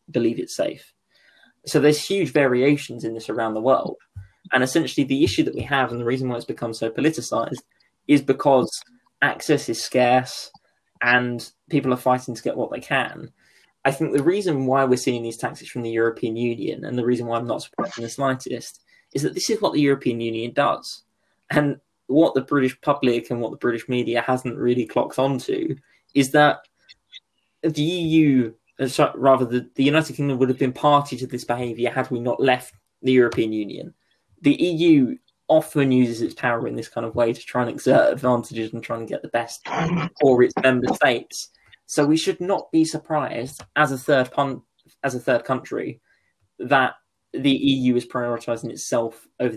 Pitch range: 120-145 Hz